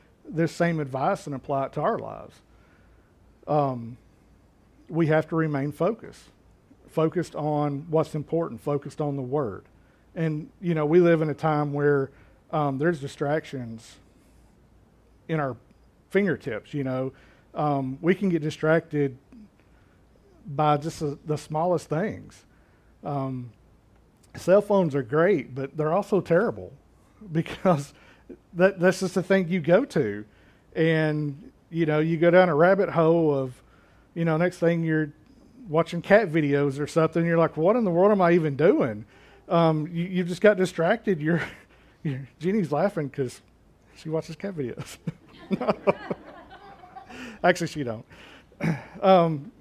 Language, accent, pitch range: English, American, 140-175 Hz